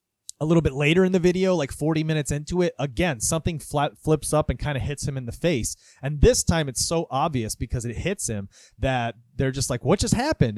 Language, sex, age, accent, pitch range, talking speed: English, male, 30-49, American, 120-155 Hz, 240 wpm